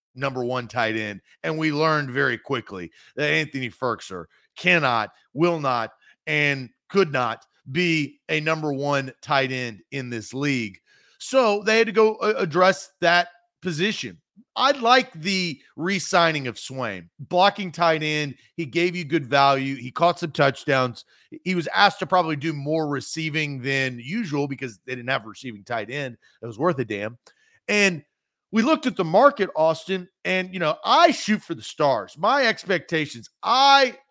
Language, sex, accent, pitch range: English, male, American, 135-195 Hz